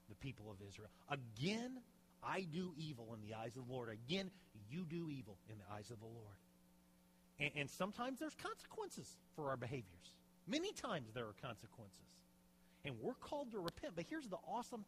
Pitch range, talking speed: 110-175 Hz, 185 wpm